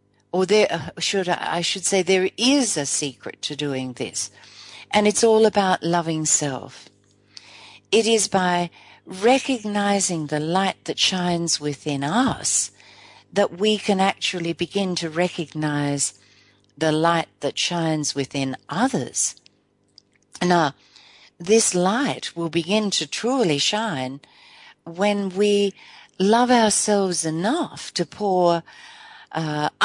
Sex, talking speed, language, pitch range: female, 120 wpm, English, 155-210 Hz